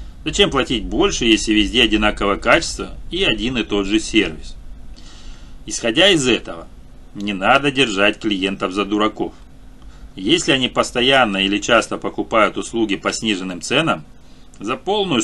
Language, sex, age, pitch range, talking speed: Russian, male, 40-59, 100-120 Hz, 135 wpm